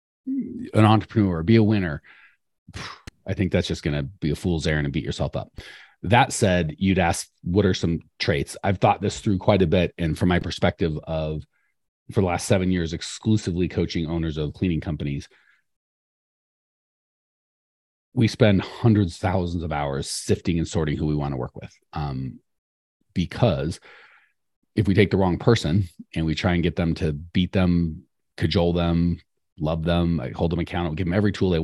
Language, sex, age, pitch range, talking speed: English, male, 30-49, 80-95 Hz, 180 wpm